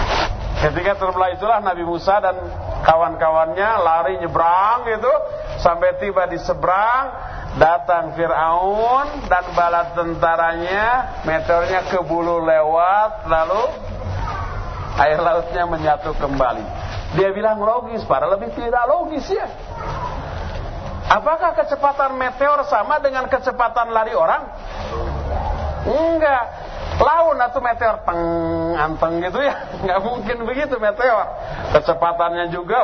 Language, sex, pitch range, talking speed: Malay, male, 165-255 Hz, 100 wpm